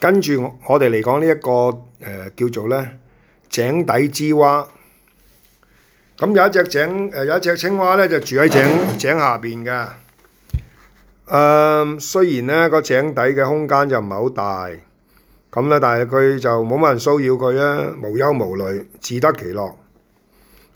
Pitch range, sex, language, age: 120-170 Hz, male, Chinese, 50-69